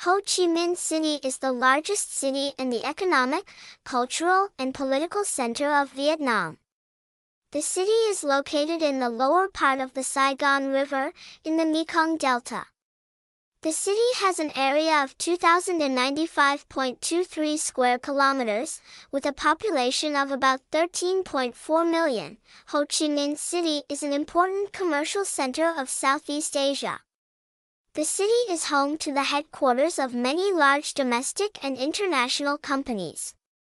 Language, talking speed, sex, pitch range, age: English, 135 wpm, male, 270-335 Hz, 10-29